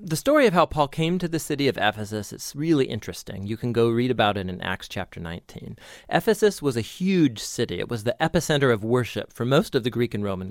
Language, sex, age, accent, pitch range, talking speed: English, male, 40-59, American, 115-155 Hz, 240 wpm